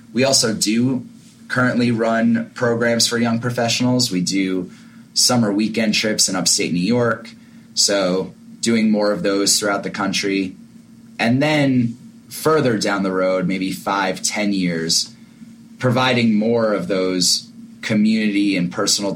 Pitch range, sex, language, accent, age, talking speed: 95-150 Hz, male, English, American, 20-39, 135 wpm